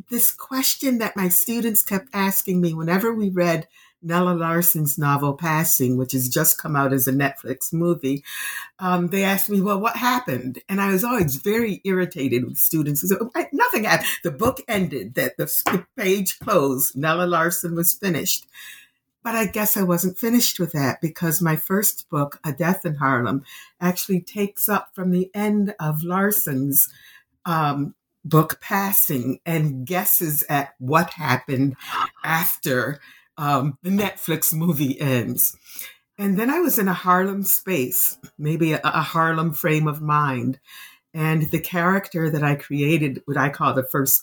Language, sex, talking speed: English, female, 160 wpm